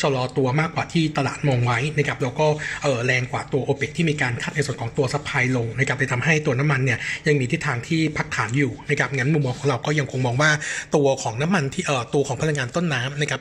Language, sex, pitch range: Thai, male, 130-155 Hz